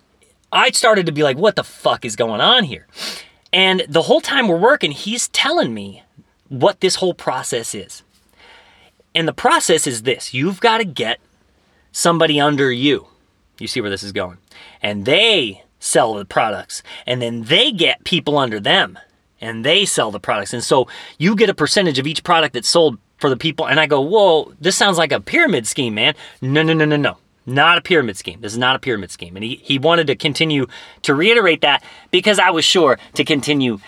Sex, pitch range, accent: male, 130-220 Hz, American